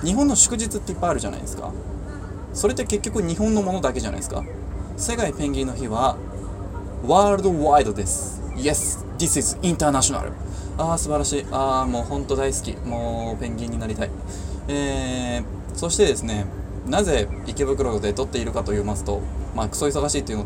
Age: 20-39